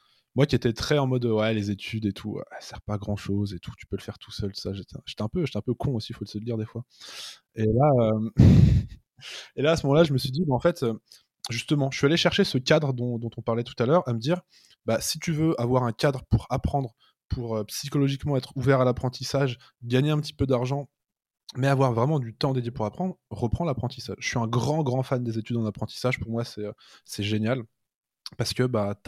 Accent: French